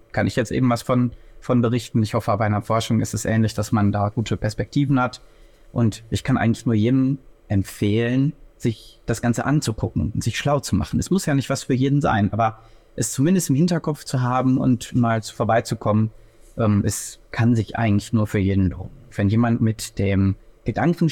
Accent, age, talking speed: German, 30-49, 200 wpm